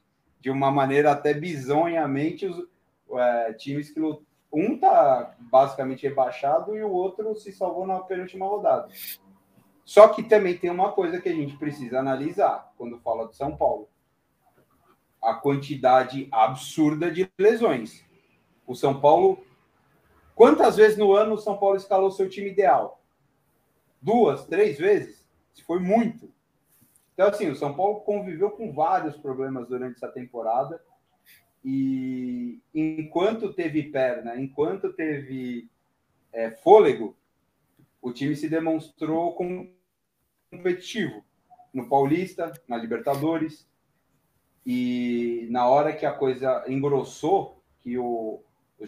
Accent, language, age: Brazilian, Portuguese, 30-49